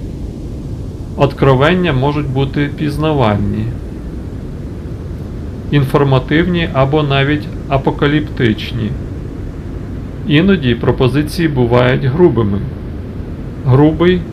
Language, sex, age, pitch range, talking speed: English, male, 40-59, 115-145 Hz, 55 wpm